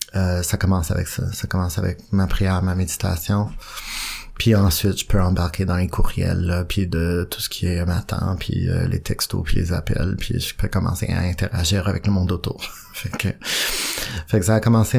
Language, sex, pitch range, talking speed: French, male, 90-100 Hz, 210 wpm